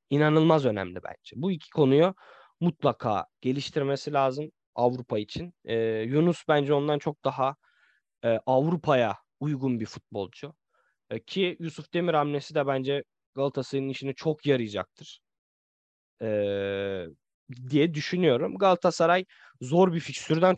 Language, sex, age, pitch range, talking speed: Turkish, male, 20-39, 120-165 Hz, 115 wpm